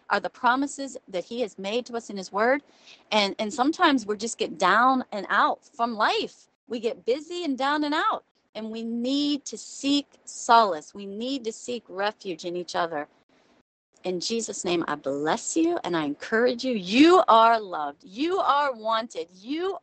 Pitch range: 190-265 Hz